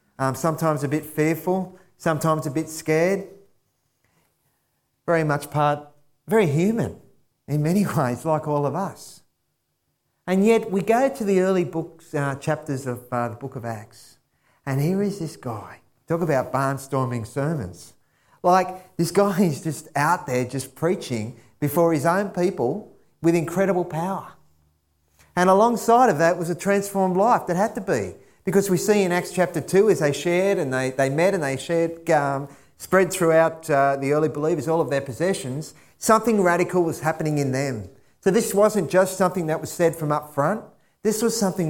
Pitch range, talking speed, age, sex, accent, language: 145-185 Hz, 175 wpm, 40-59, male, Australian, English